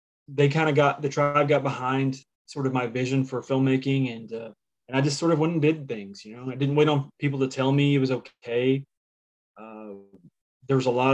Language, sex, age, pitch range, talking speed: English, male, 20-39, 115-140 Hz, 225 wpm